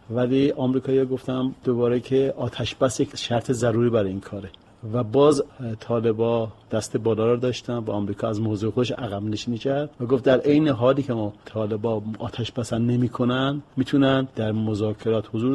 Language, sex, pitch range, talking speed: Persian, male, 115-135 Hz, 165 wpm